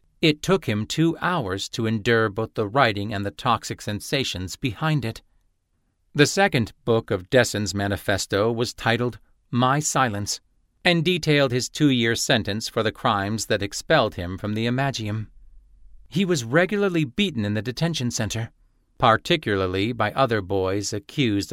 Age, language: 50-69, English